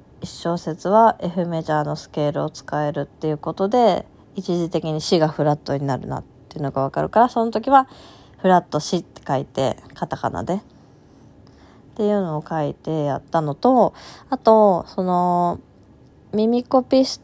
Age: 20-39